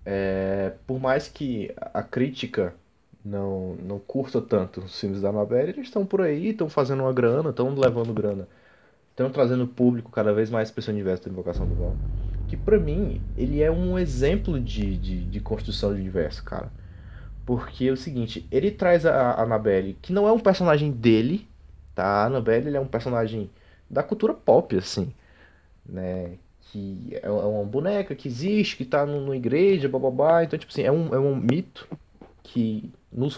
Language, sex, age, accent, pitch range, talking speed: Portuguese, male, 20-39, Brazilian, 95-145 Hz, 185 wpm